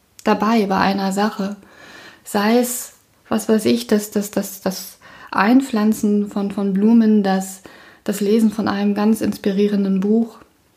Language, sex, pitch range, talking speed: German, female, 195-220 Hz, 140 wpm